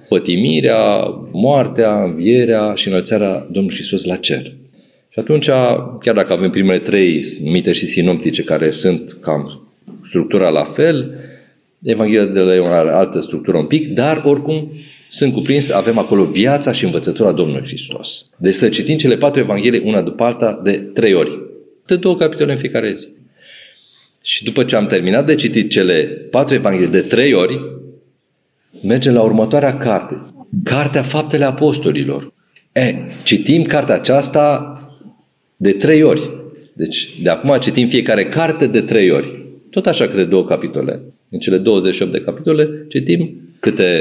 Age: 40-59